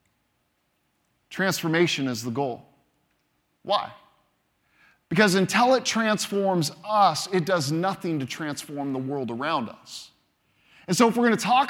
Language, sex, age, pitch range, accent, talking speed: English, male, 20-39, 145-205 Hz, American, 135 wpm